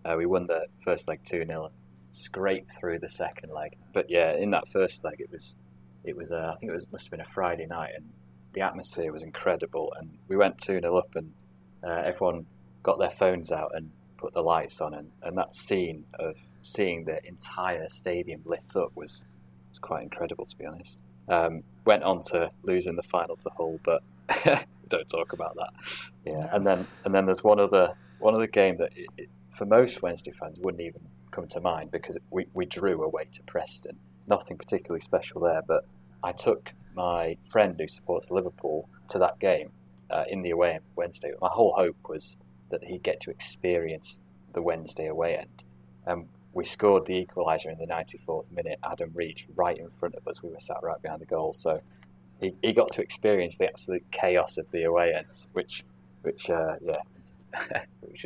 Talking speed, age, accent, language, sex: 200 wpm, 20-39, British, English, male